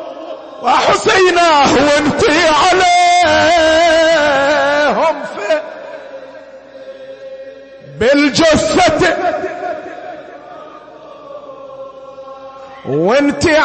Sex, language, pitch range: male, Arabic, 290-340 Hz